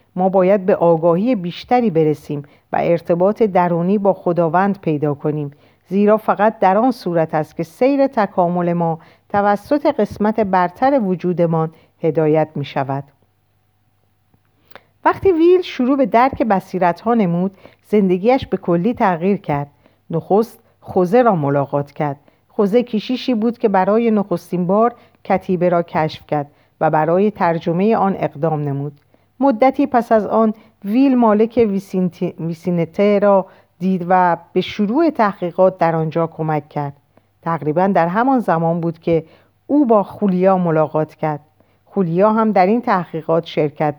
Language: Persian